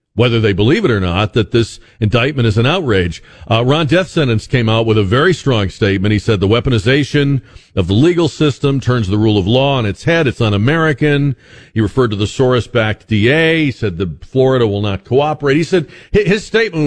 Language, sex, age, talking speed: English, male, 50-69, 205 wpm